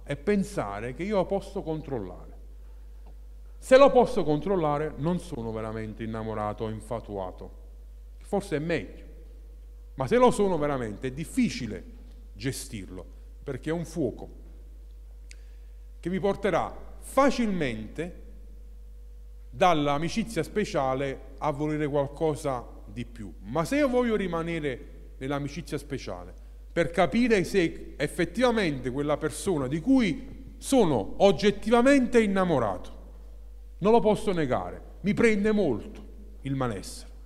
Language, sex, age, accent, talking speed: Italian, male, 40-59, native, 110 wpm